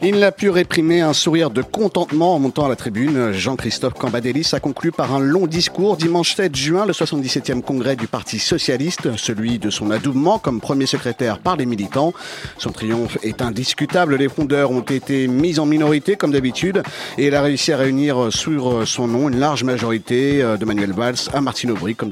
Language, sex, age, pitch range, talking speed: French, male, 50-69, 125-160 Hz, 195 wpm